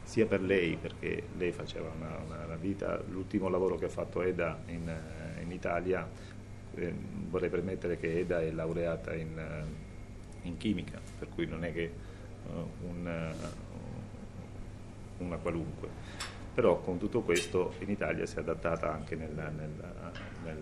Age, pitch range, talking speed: 40-59, 80-100 Hz, 150 wpm